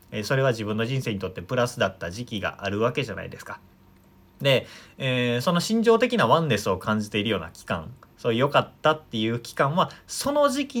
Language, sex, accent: Japanese, male, native